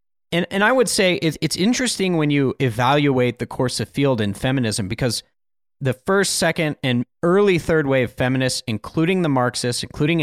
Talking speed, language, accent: 170 wpm, English, American